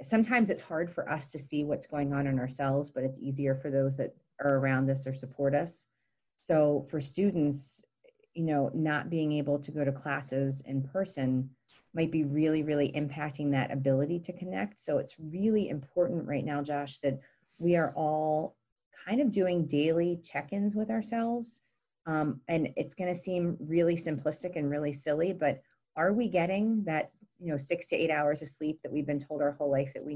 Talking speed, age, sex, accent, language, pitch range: 195 wpm, 30-49, female, American, English, 140-170 Hz